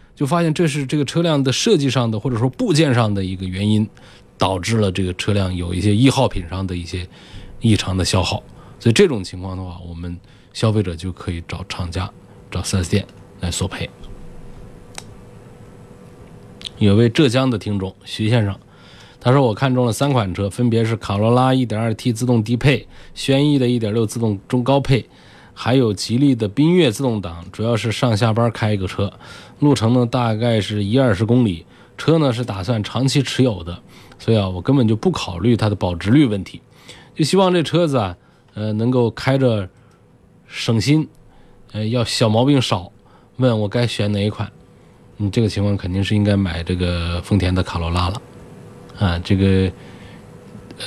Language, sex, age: Chinese, male, 20-39